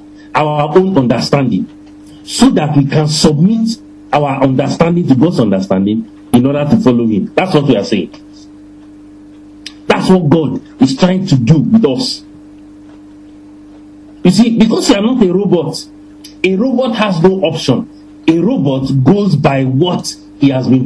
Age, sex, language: 50-69, male, English